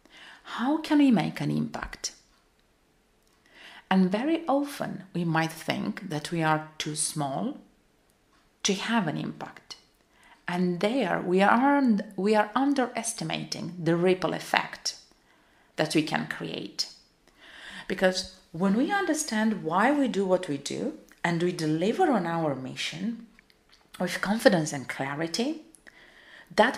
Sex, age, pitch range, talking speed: female, 40-59, 170-225 Hz, 125 wpm